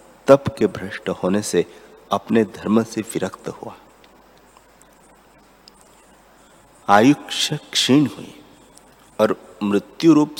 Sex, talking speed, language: male, 90 wpm, Hindi